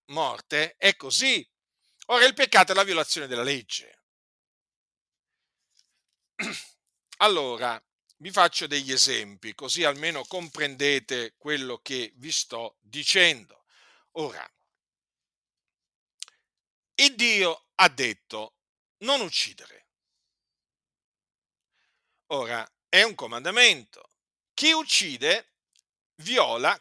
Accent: native